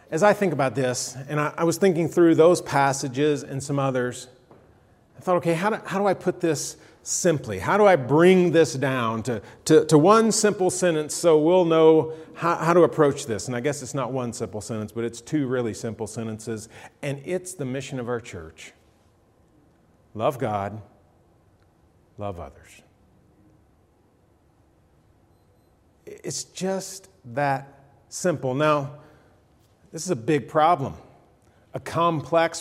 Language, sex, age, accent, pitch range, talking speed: English, male, 40-59, American, 120-170 Hz, 155 wpm